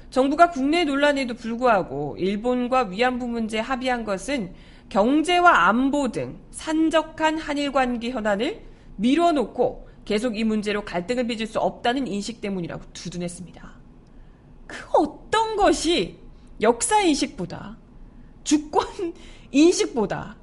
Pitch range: 215-315 Hz